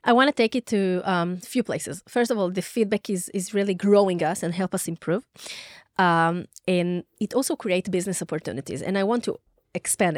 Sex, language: female, Hebrew